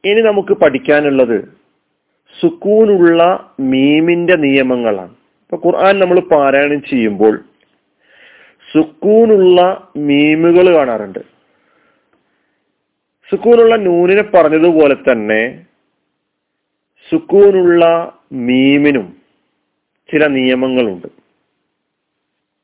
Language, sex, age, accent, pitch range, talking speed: Malayalam, male, 40-59, native, 135-195 Hz, 60 wpm